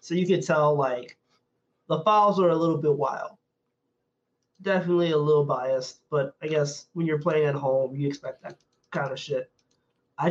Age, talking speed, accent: 20-39, 180 wpm, American